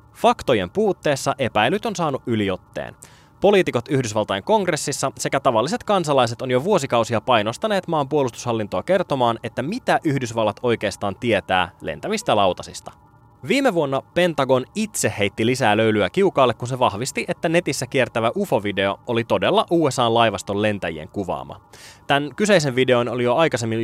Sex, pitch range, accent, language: male, 110-160 Hz, native, Finnish